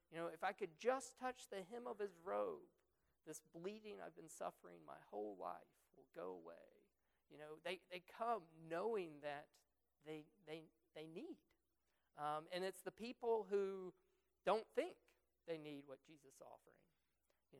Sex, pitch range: male, 150-195 Hz